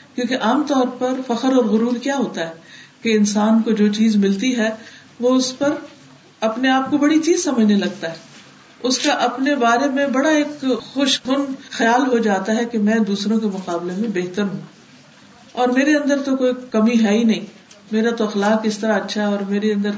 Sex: female